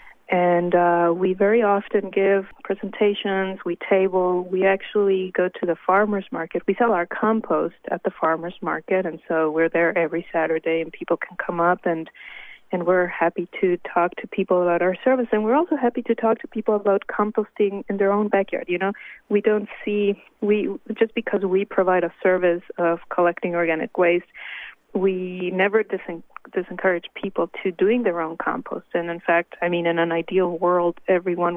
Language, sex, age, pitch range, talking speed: English, female, 30-49, 170-195 Hz, 180 wpm